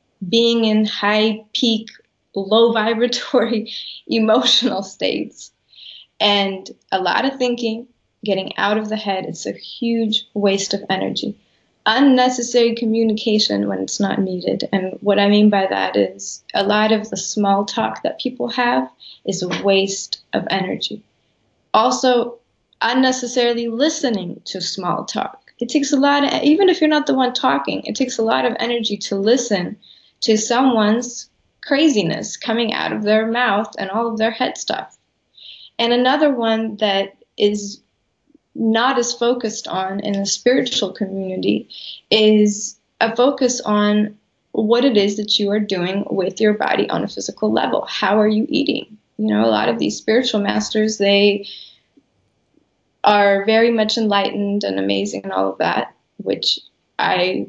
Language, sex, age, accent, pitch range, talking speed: English, female, 20-39, American, 200-240 Hz, 155 wpm